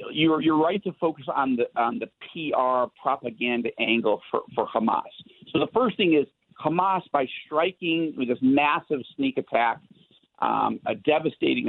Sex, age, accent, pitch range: male, 50-69, American, 130-190 Hz